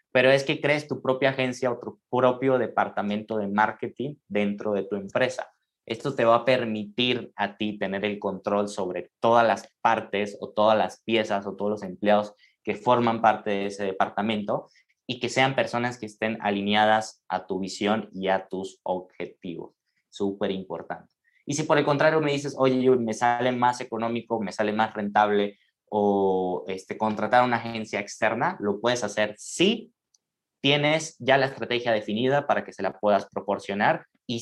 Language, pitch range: Spanish, 100-125 Hz